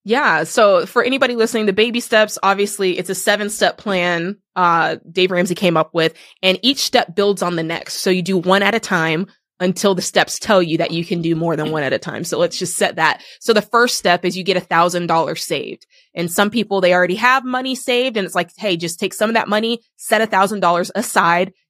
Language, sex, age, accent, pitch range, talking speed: English, female, 20-39, American, 175-220 Hz, 245 wpm